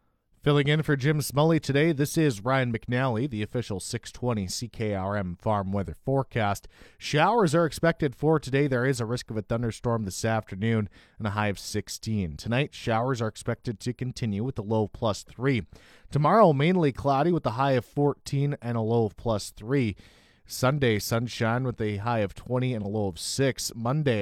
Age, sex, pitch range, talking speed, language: 30-49, male, 105-140 Hz, 185 wpm, English